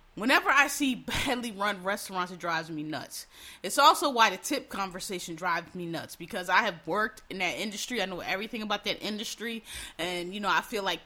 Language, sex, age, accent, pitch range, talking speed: English, female, 30-49, American, 195-255 Hz, 205 wpm